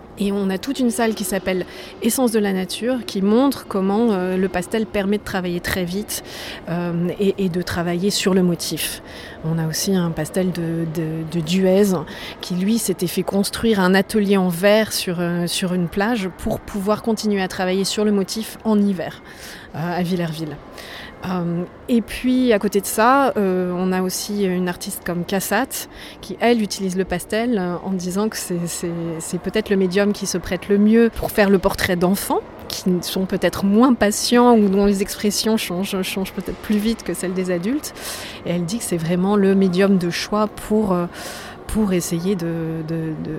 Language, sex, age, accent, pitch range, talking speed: French, female, 30-49, French, 180-210 Hz, 190 wpm